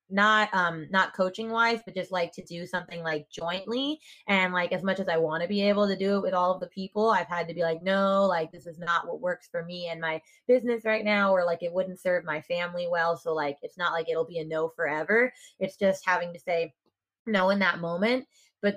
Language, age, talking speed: English, 20-39, 250 wpm